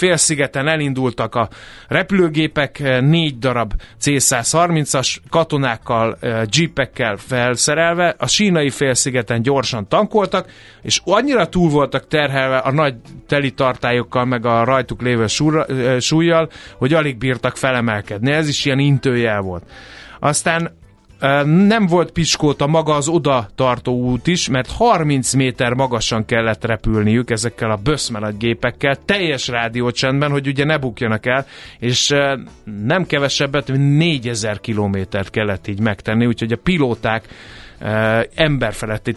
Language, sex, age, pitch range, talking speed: Hungarian, male, 30-49, 115-150 Hz, 115 wpm